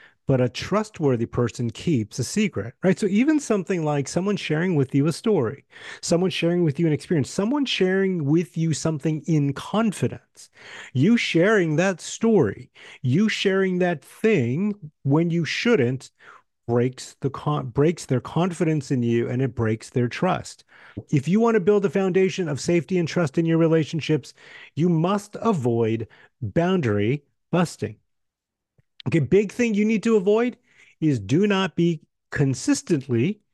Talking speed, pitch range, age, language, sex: 150 wpm, 130-200 Hz, 30-49, English, male